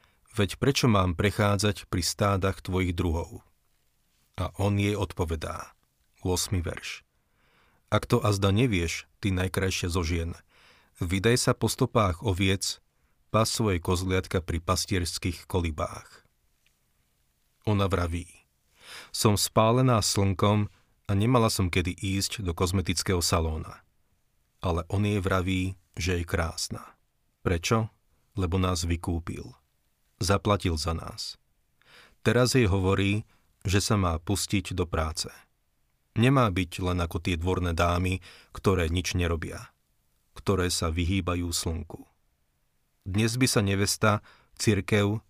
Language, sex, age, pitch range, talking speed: Slovak, male, 40-59, 85-105 Hz, 115 wpm